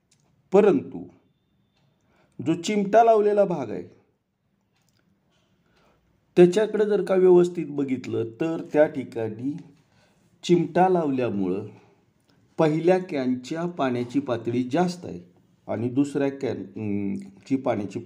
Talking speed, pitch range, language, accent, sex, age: 85 wpm, 115-180 Hz, Marathi, native, male, 50-69